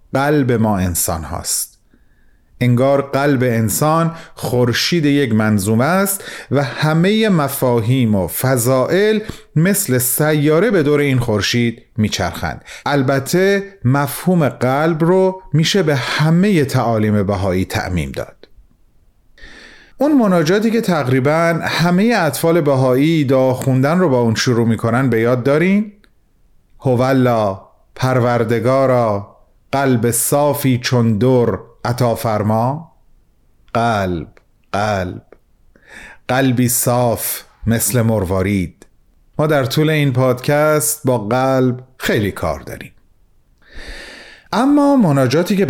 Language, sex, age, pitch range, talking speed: Persian, male, 40-59, 110-155 Hz, 100 wpm